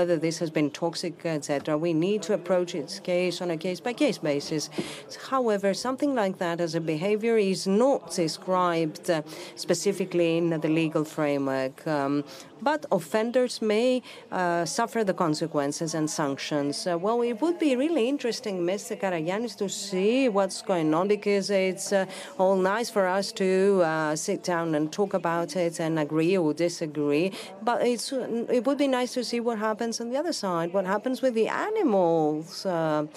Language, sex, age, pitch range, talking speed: Greek, female, 40-59, 165-220 Hz, 165 wpm